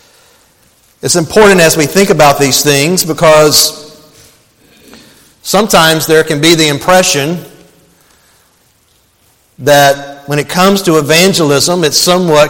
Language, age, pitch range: English, 40-59, 145-175 Hz